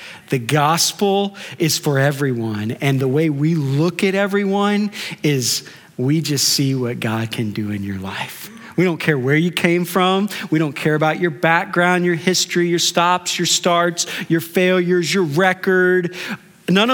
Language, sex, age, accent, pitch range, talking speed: English, male, 40-59, American, 150-205 Hz, 165 wpm